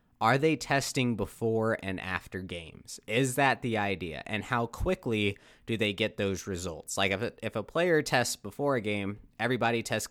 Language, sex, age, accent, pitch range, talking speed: English, male, 20-39, American, 95-125 Hz, 185 wpm